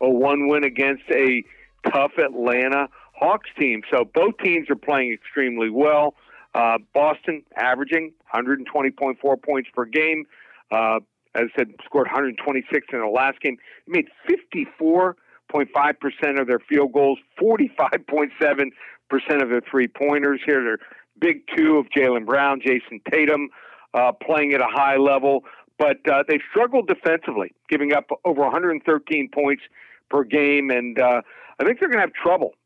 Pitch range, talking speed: 130-150 Hz, 145 wpm